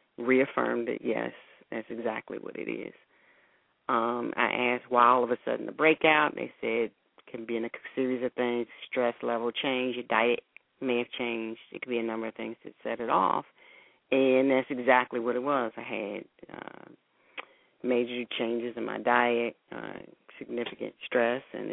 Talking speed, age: 180 wpm, 40-59